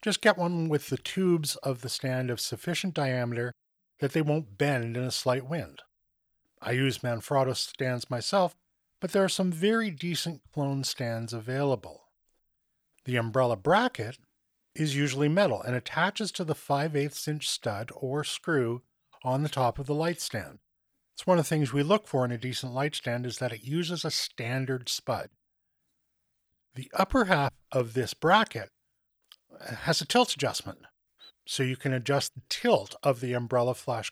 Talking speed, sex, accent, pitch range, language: 170 wpm, male, American, 120-160 Hz, English